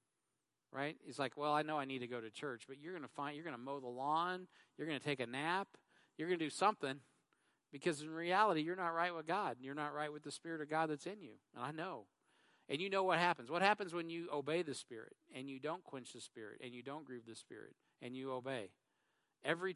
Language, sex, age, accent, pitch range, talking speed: English, male, 50-69, American, 135-165 Hz, 245 wpm